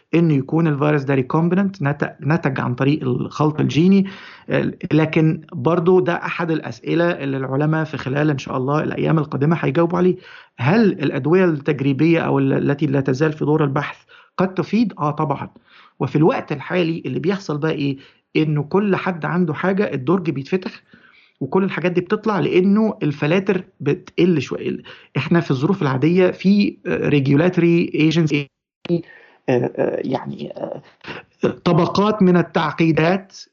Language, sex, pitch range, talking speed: Arabic, male, 150-185 Hz, 130 wpm